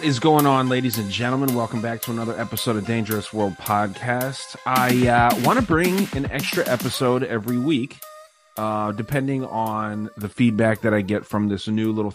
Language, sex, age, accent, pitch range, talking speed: English, male, 30-49, American, 105-135 Hz, 185 wpm